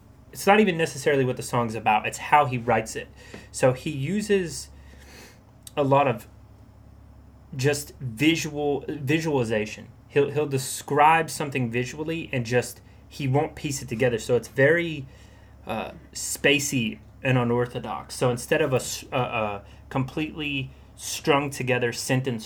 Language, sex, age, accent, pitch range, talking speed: English, male, 30-49, American, 105-135 Hz, 135 wpm